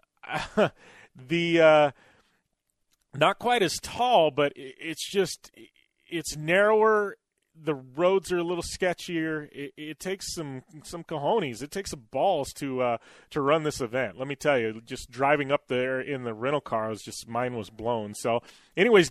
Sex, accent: male, American